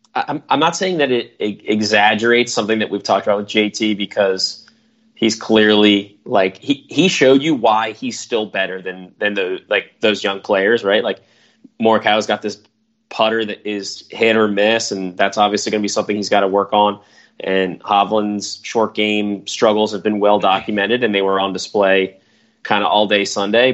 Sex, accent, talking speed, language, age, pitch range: male, American, 190 wpm, English, 20-39, 100-115 Hz